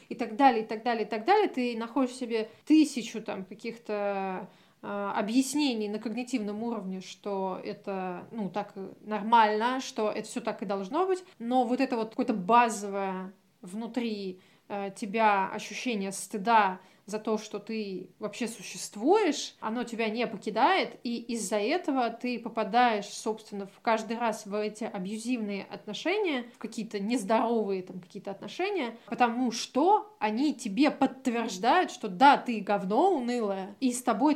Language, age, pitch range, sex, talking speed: Russian, 20-39, 205-245 Hz, female, 150 wpm